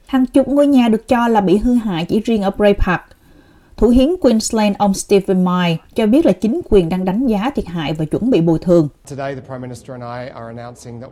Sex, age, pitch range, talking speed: female, 30-49, 175-255 Hz, 195 wpm